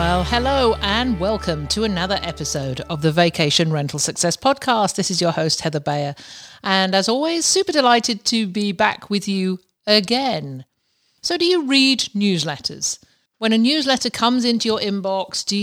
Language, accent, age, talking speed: English, British, 50-69, 165 wpm